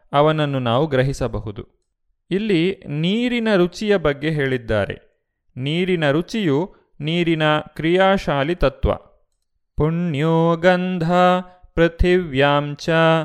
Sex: male